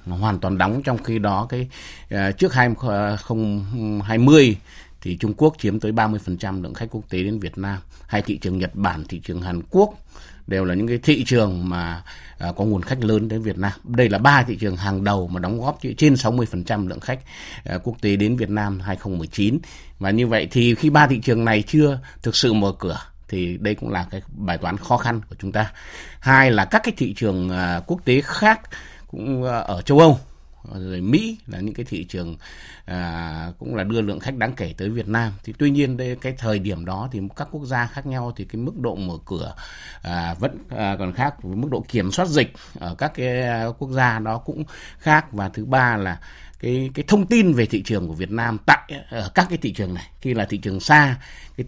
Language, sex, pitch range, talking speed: Vietnamese, male, 95-125 Hz, 225 wpm